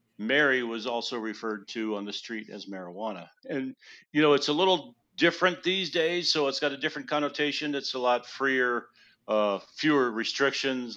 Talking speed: 175 wpm